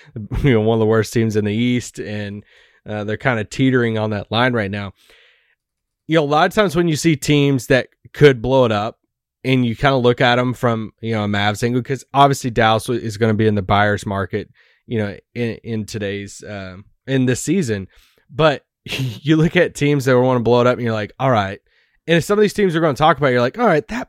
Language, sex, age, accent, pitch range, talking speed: English, male, 20-39, American, 120-170 Hz, 255 wpm